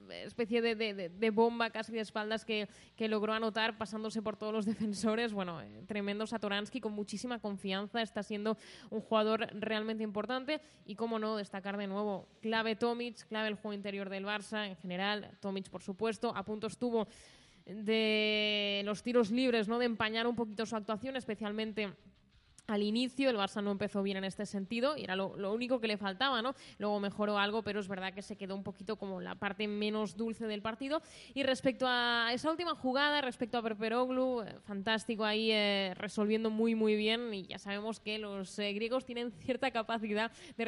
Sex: female